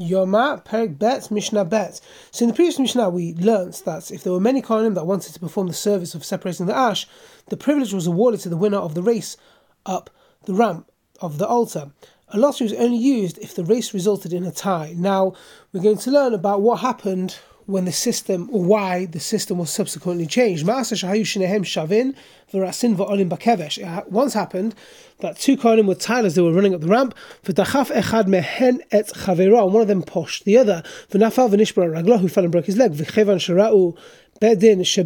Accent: British